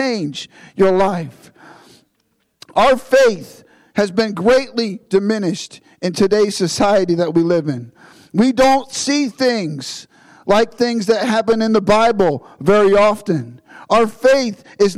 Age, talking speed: 50-69, 125 wpm